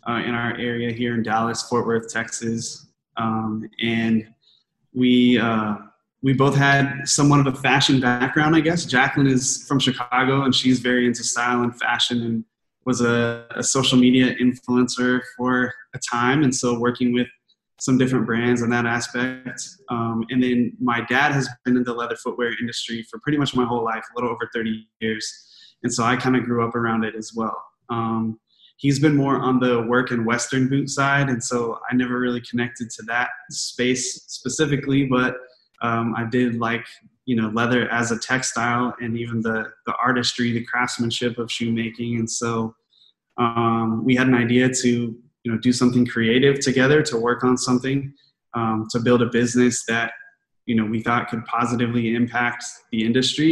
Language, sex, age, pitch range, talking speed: English, male, 20-39, 115-125 Hz, 185 wpm